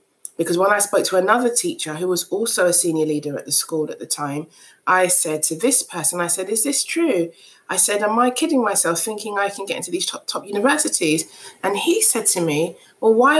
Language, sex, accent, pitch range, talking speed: English, female, British, 180-265 Hz, 230 wpm